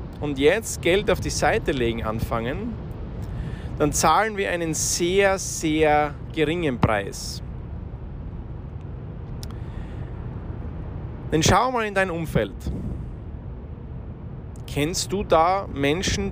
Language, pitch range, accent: German, 115-150 Hz, Austrian